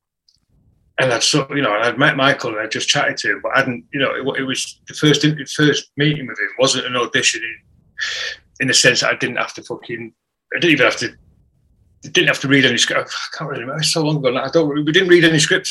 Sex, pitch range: male, 120-160 Hz